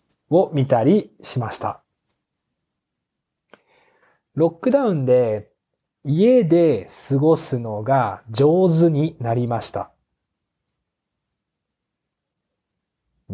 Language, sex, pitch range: Japanese, male, 125-165 Hz